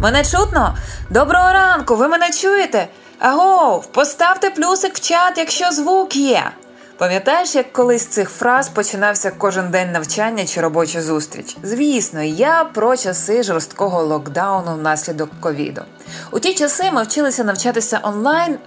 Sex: female